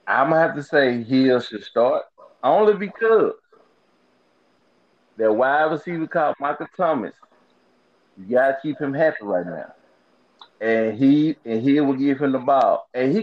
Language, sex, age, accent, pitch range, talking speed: English, male, 30-49, American, 110-155 Hz, 165 wpm